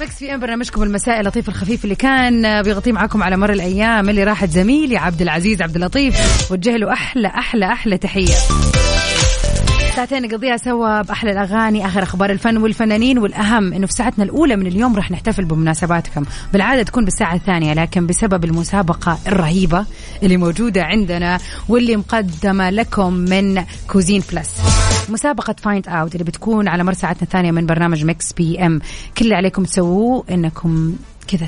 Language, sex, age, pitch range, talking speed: Arabic, female, 30-49, 175-225 Hz, 150 wpm